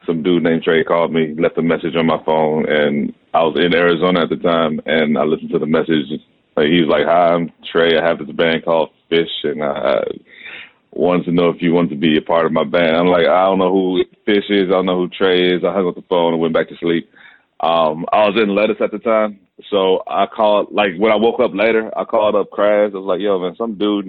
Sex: male